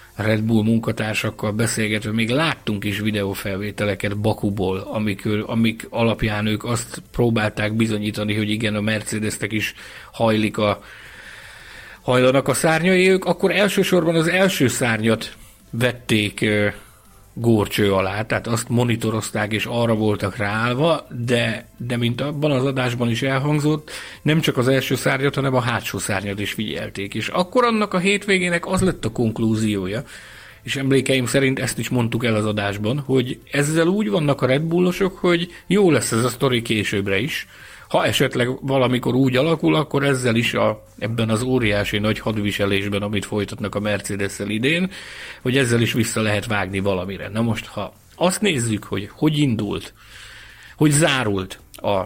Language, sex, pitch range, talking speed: Hungarian, male, 105-130 Hz, 150 wpm